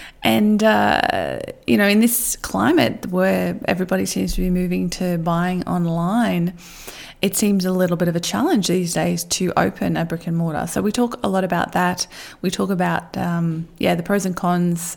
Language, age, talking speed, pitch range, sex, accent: English, 20-39, 190 wpm, 175-230 Hz, female, Australian